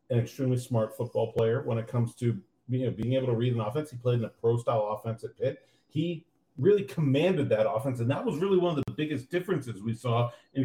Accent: American